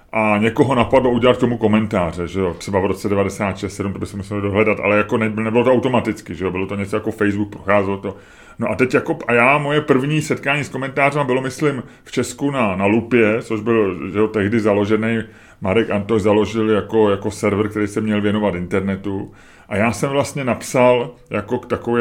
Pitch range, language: 110-135 Hz, Czech